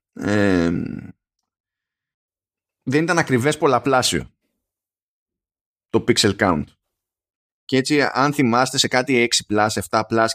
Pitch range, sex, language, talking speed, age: 100-150 Hz, male, Greek, 85 wpm, 20-39